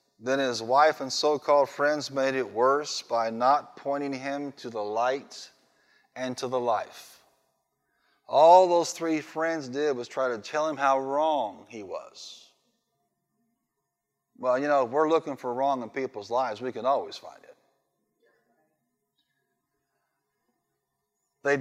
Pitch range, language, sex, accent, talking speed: 120-150 Hz, English, male, American, 140 wpm